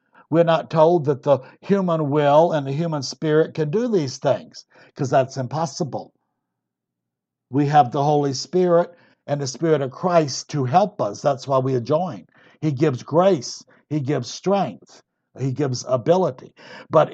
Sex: male